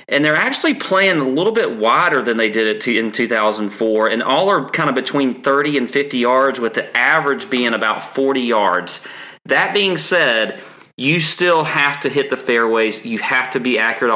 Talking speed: 195 wpm